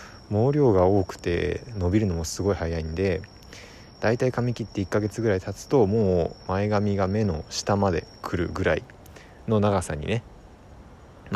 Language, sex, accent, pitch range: Japanese, male, native, 85-115 Hz